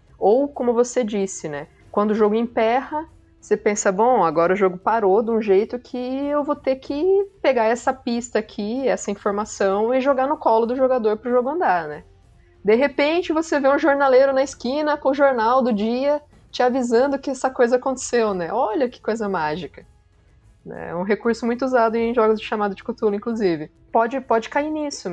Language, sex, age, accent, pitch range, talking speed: Portuguese, female, 20-39, Brazilian, 195-260 Hz, 195 wpm